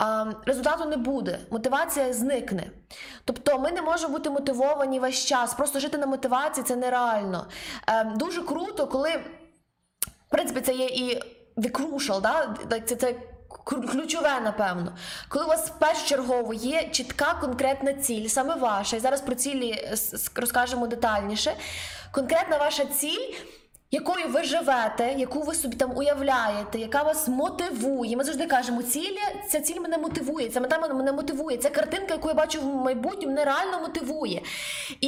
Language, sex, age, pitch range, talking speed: Ukrainian, female, 20-39, 255-315 Hz, 150 wpm